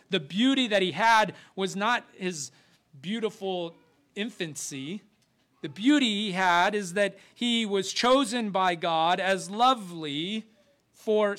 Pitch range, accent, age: 135-200 Hz, American, 40-59